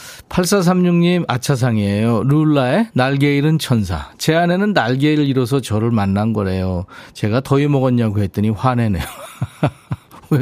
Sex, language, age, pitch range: male, Korean, 40-59, 105-155 Hz